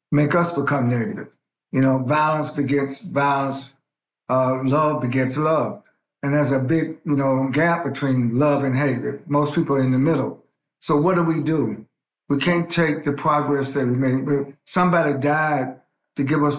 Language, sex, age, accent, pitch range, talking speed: English, male, 60-79, American, 135-155 Hz, 175 wpm